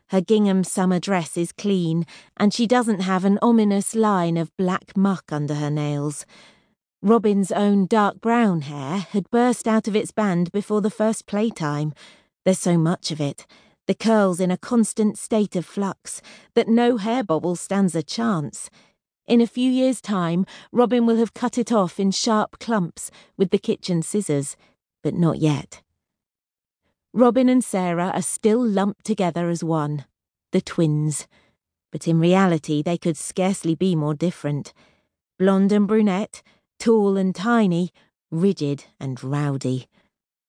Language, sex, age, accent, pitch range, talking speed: English, female, 40-59, British, 165-220 Hz, 155 wpm